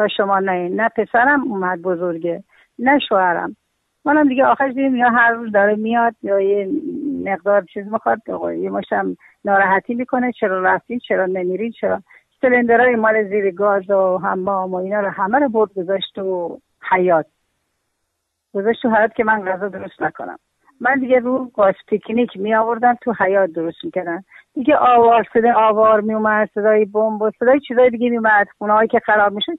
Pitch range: 185-240 Hz